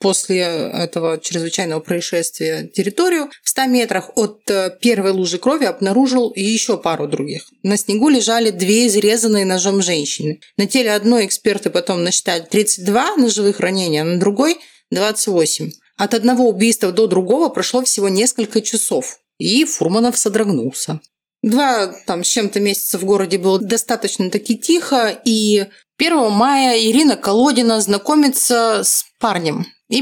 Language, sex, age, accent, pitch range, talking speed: Russian, female, 30-49, native, 195-250 Hz, 130 wpm